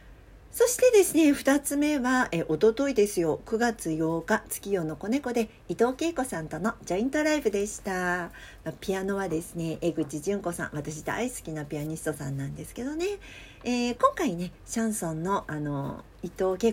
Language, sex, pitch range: Japanese, female, 165-275 Hz